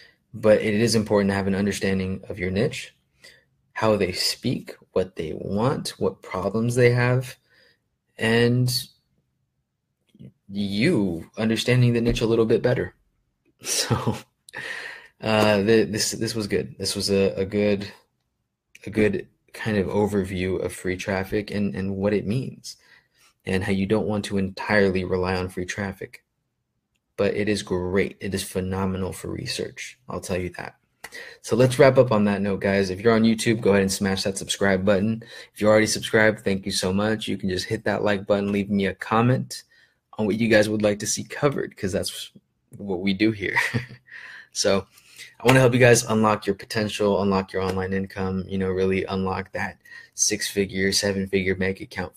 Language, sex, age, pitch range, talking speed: English, male, 20-39, 95-110 Hz, 175 wpm